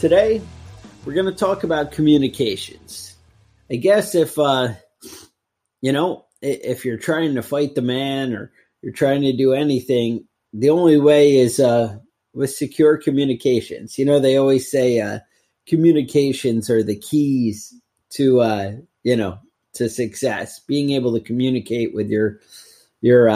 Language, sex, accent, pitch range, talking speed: English, male, American, 115-140 Hz, 145 wpm